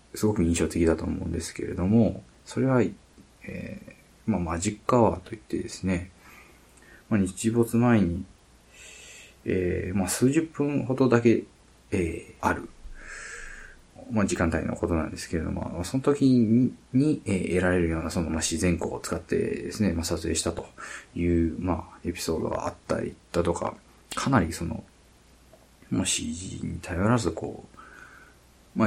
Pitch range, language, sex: 85-105 Hz, Japanese, male